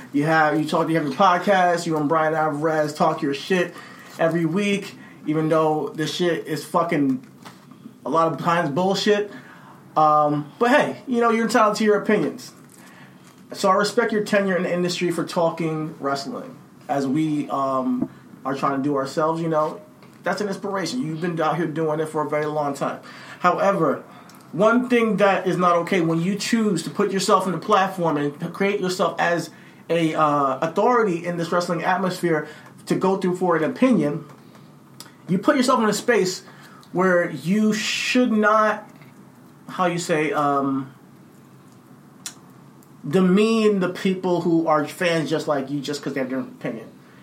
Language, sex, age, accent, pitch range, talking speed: English, male, 30-49, American, 150-195 Hz, 170 wpm